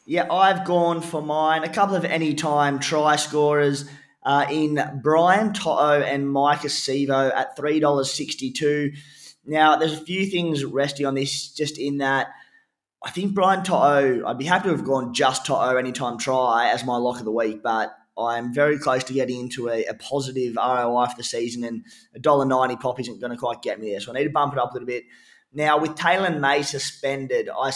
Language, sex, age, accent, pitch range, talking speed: English, male, 20-39, Australian, 130-155 Hz, 200 wpm